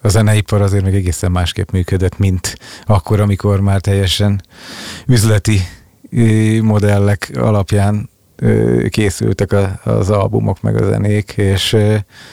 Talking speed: 105 wpm